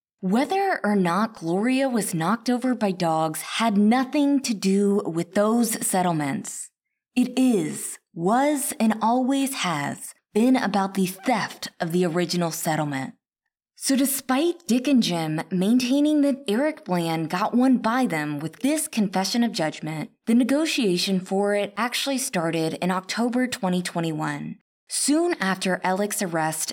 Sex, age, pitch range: female, 20-39, 175-255 Hz